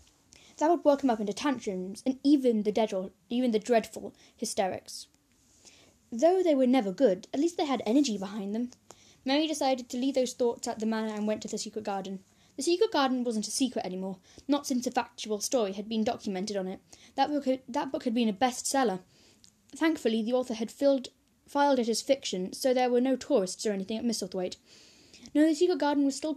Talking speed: 210 wpm